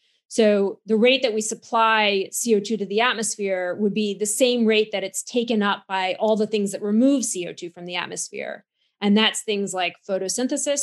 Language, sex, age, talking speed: English, female, 30-49, 190 wpm